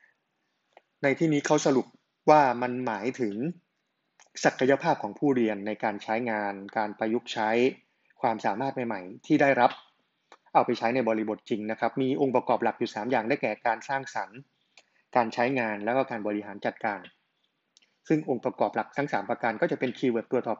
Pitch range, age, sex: 115-140 Hz, 20-39, male